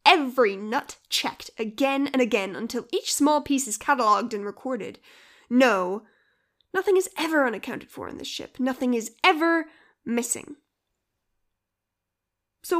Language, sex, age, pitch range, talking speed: English, female, 10-29, 210-290 Hz, 130 wpm